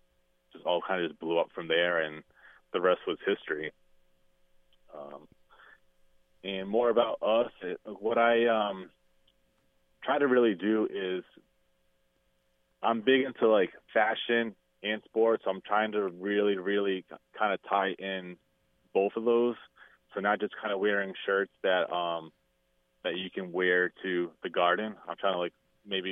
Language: English